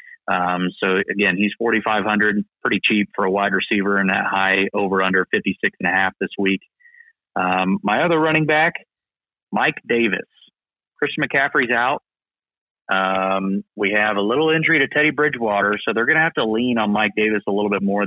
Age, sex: 30-49, male